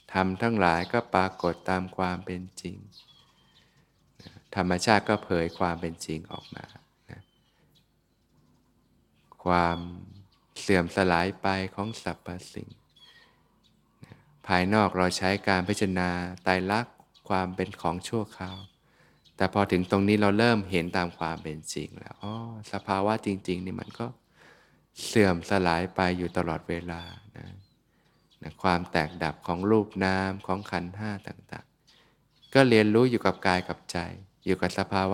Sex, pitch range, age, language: male, 90-105 Hz, 20-39, Thai